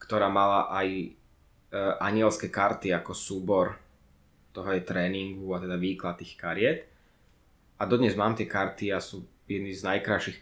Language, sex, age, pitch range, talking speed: Slovak, male, 20-39, 90-110 Hz, 150 wpm